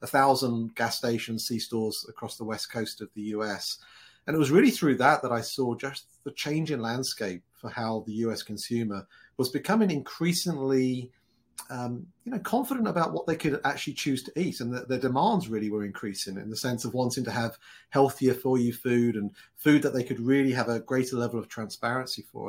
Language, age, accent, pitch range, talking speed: English, 40-59, British, 110-140 Hz, 215 wpm